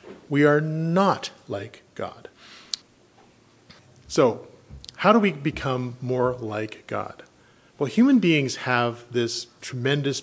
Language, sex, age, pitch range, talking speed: English, male, 40-59, 120-150 Hz, 110 wpm